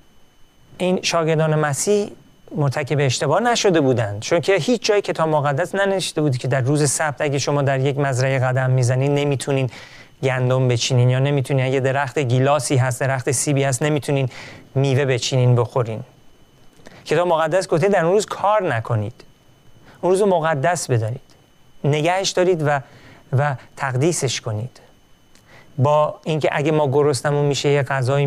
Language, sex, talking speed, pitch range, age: Persian, male, 140 wpm, 135-180 Hz, 40-59